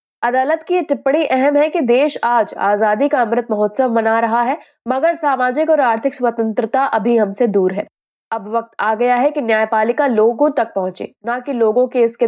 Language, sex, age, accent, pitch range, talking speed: Hindi, female, 20-39, native, 220-275 Hz, 190 wpm